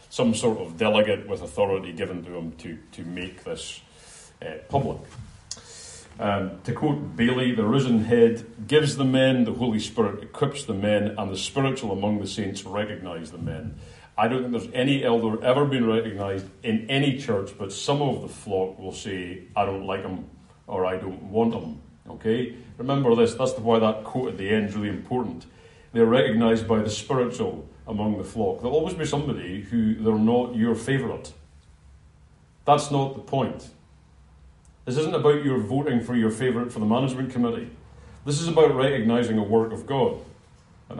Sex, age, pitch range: male, 40-59, 95-135 Hz